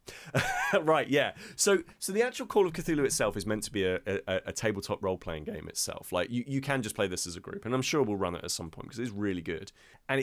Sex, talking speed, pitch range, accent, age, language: male, 265 wpm, 95-135 Hz, British, 30-49, English